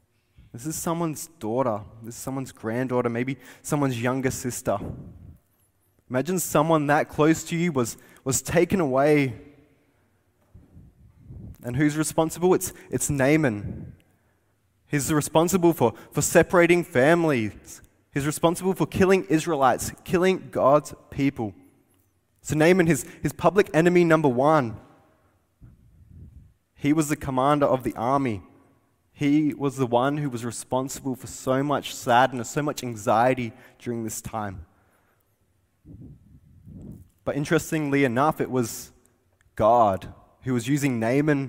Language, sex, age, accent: English, male, 20-39, Australian